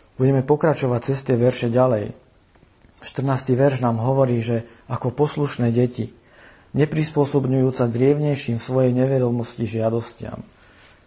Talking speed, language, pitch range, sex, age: 105 wpm, Slovak, 110-130 Hz, male, 50-69